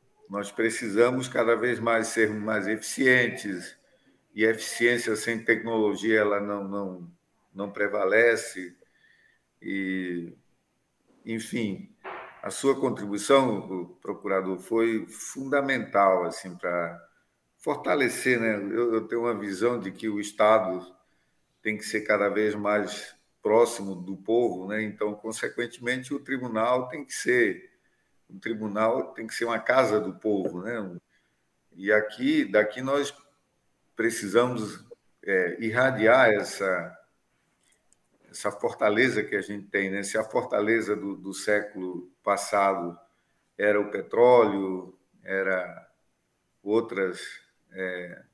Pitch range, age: 95-115 Hz, 50-69